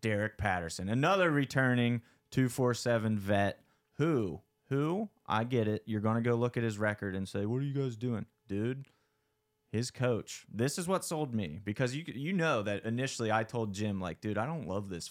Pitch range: 95-120 Hz